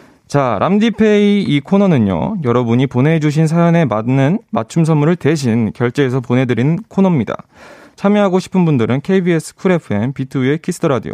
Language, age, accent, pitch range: Korean, 20-39, native, 125-170 Hz